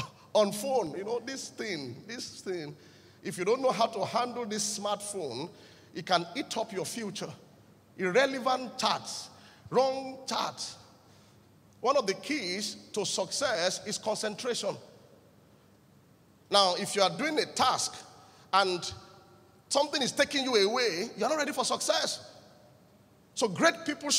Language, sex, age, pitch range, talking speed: English, male, 40-59, 195-285 Hz, 140 wpm